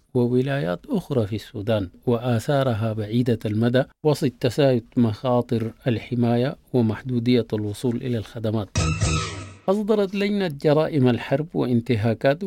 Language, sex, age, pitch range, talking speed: English, male, 50-69, 115-130 Hz, 90 wpm